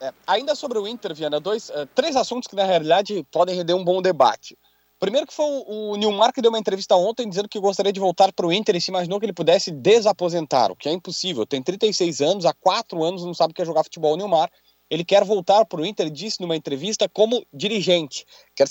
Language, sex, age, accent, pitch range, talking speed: Portuguese, male, 30-49, Brazilian, 165-225 Hz, 235 wpm